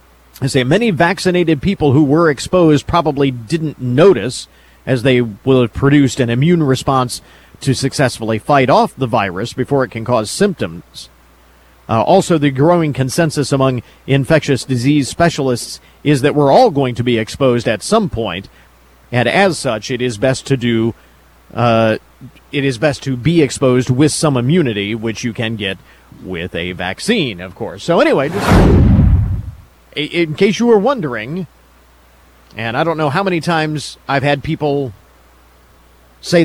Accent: American